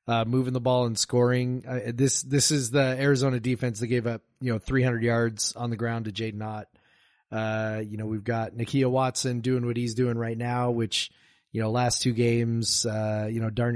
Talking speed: 210 wpm